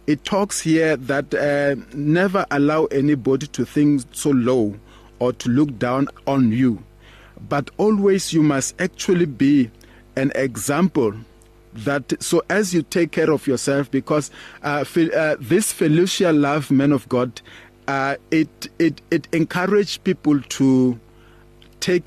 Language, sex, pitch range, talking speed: English, male, 120-165 Hz, 135 wpm